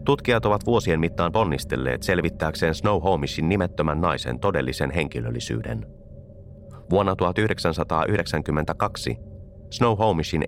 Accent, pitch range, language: native, 75-105 Hz, Finnish